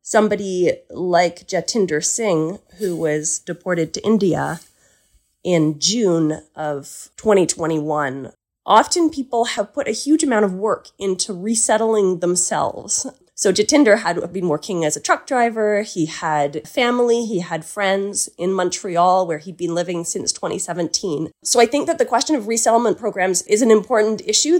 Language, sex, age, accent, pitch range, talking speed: English, female, 30-49, American, 175-230 Hz, 150 wpm